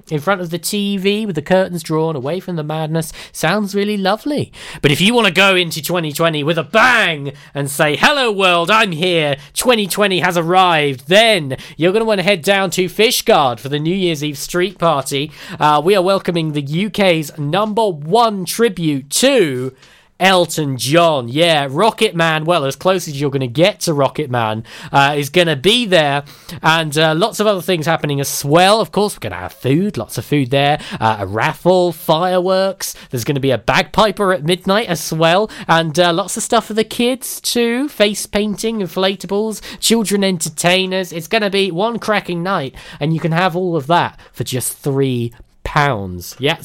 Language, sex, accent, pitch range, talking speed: English, male, British, 145-200 Hz, 195 wpm